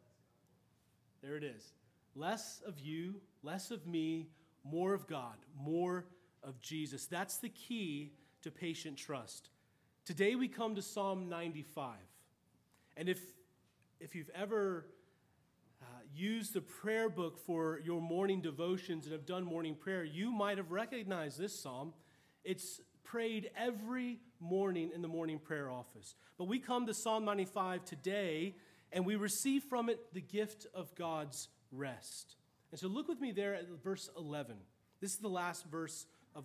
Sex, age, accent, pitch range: male, 30-49, American, 150-205 Hz